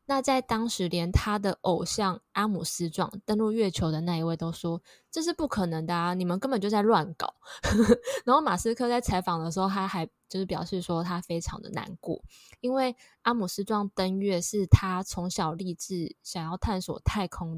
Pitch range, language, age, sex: 175-220 Hz, Chinese, 20-39, female